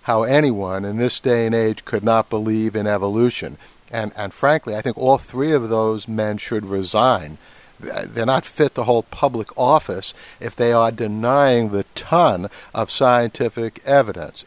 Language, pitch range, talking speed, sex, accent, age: English, 110-135 Hz, 165 wpm, male, American, 60-79